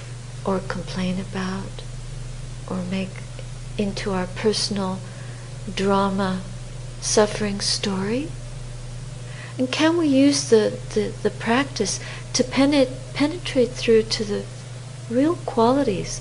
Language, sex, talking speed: English, female, 90 wpm